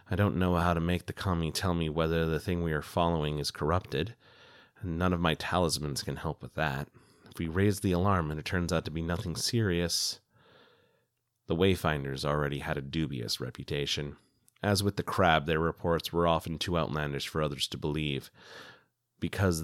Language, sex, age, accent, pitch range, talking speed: English, male, 30-49, American, 75-95 Hz, 190 wpm